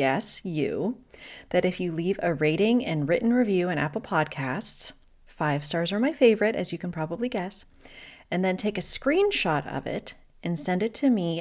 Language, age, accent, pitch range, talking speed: English, 30-49, American, 155-205 Hz, 190 wpm